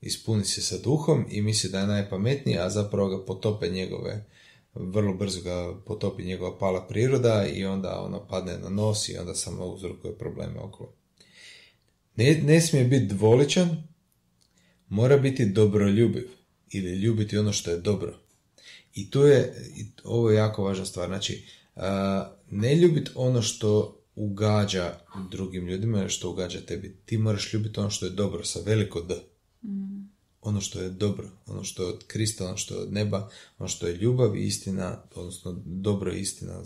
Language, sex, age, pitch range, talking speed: Croatian, male, 30-49, 95-115 Hz, 165 wpm